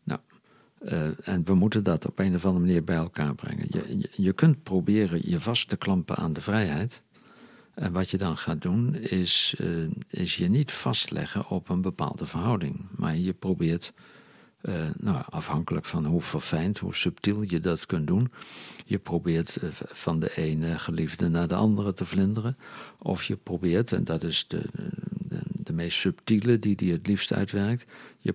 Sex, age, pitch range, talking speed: male, 50-69, 85-115 Hz, 175 wpm